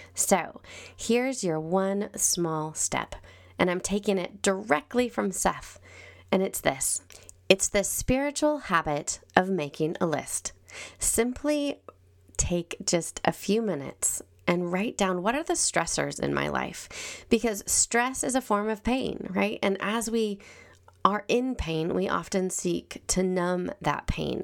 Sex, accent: female, American